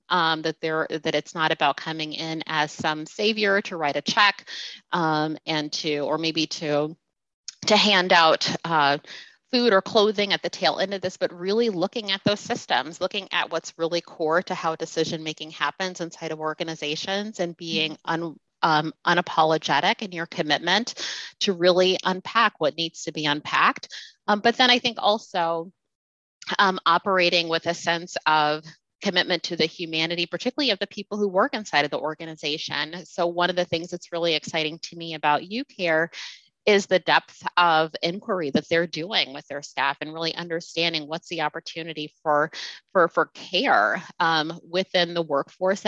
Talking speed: 175 wpm